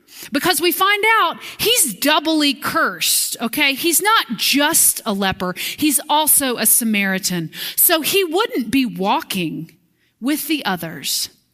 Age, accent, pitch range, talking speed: 30-49, American, 215-315 Hz, 130 wpm